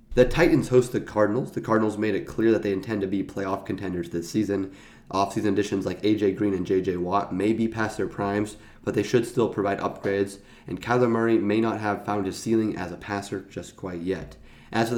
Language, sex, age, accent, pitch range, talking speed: English, male, 30-49, American, 95-115 Hz, 220 wpm